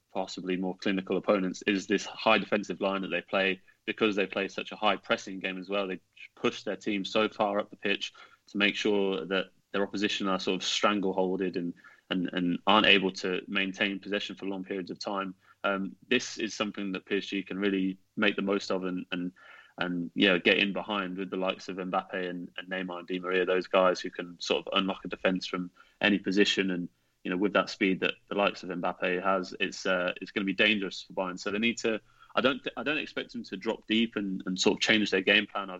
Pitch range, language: 95-100 Hz, English